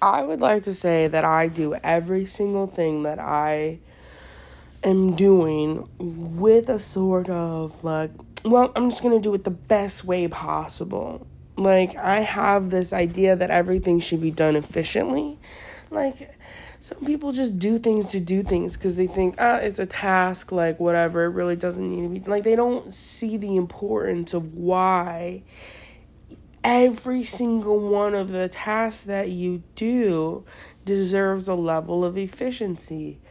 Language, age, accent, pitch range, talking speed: English, 20-39, American, 175-225 Hz, 160 wpm